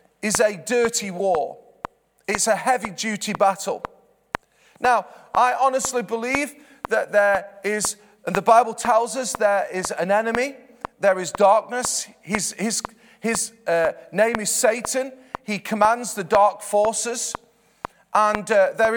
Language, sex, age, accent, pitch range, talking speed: English, male, 40-59, British, 205-245 Hz, 135 wpm